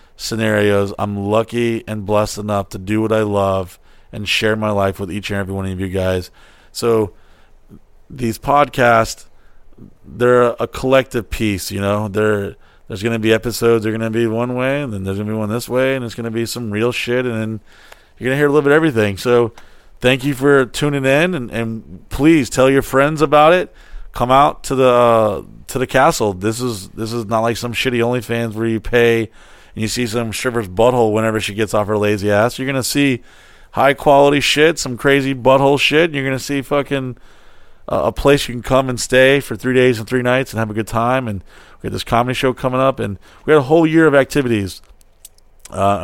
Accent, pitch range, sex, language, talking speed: American, 105-130 Hz, male, English, 220 wpm